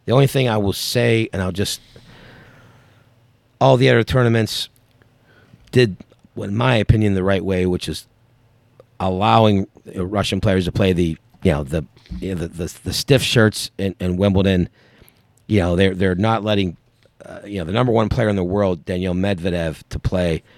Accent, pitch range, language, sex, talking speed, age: American, 90-115 Hz, English, male, 180 wpm, 50-69